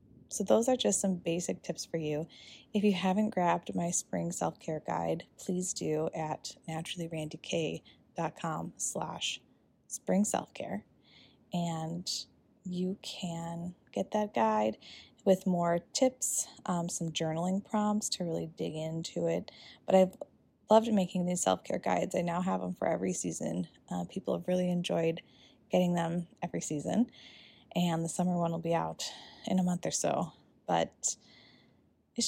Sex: female